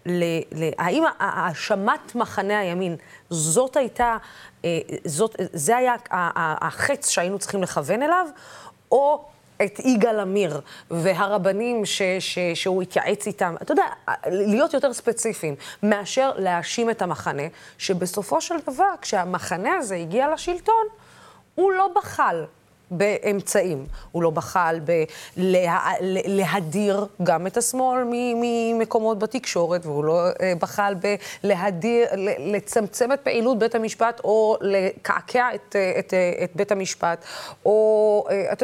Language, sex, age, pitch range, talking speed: Hebrew, female, 20-39, 185-250 Hz, 115 wpm